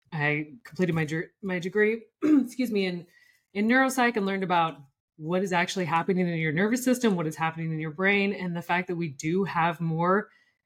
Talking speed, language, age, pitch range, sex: 205 wpm, English, 20-39, 160-195 Hz, female